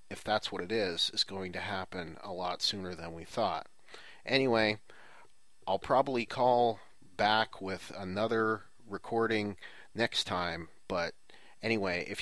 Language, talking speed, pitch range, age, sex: English, 135 wpm, 95-115 Hz, 30-49, male